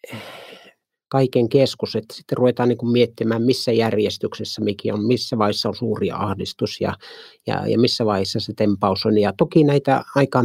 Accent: native